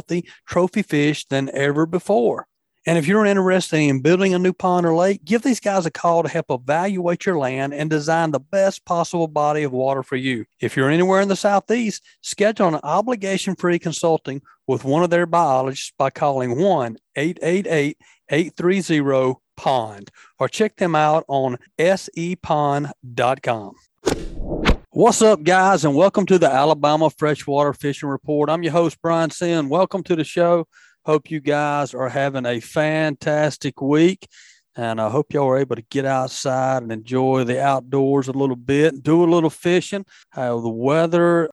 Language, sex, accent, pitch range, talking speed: English, male, American, 130-175 Hz, 160 wpm